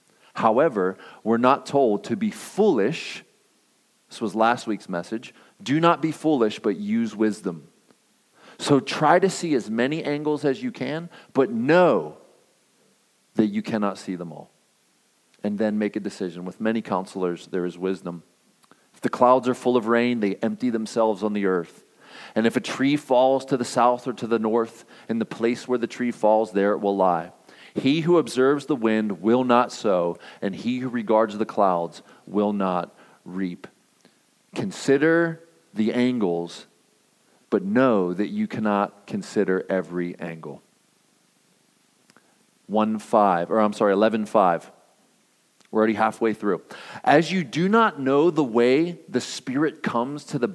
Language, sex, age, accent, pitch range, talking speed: English, male, 40-59, American, 105-135 Hz, 155 wpm